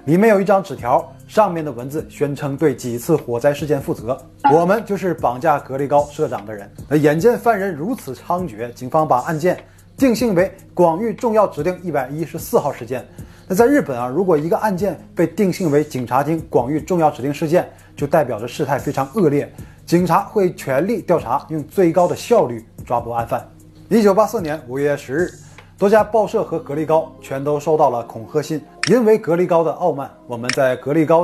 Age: 20-39